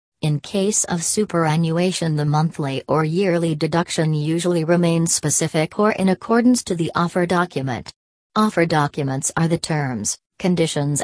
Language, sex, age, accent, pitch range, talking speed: English, female, 40-59, American, 150-175 Hz, 135 wpm